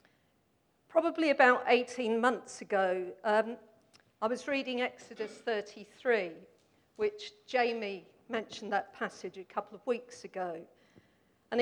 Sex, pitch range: female, 215-275 Hz